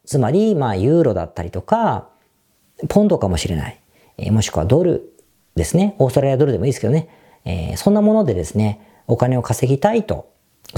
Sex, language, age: female, Japanese, 40-59